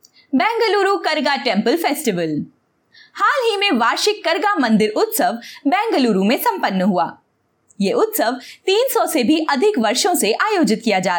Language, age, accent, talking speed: Hindi, 20-39, native, 130 wpm